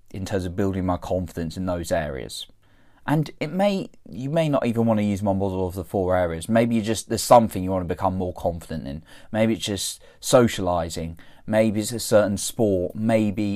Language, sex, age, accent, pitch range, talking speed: English, male, 20-39, British, 95-120 Hz, 195 wpm